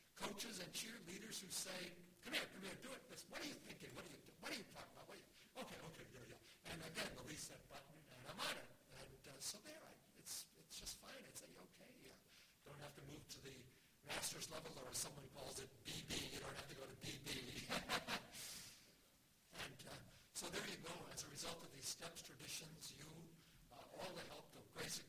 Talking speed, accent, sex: 225 wpm, American, male